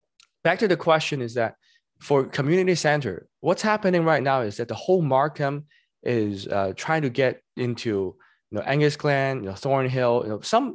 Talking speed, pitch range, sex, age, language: 155 wpm, 125-170 Hz, male, 20-39, English